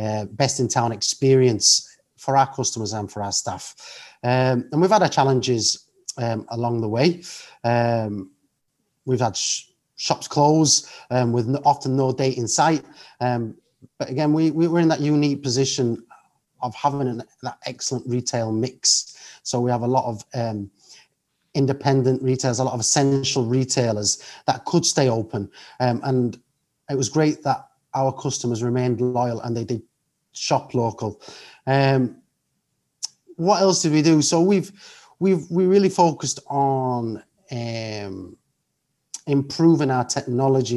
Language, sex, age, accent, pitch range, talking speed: English, male, 30-49, British, 120-140 Hz, 150 wpm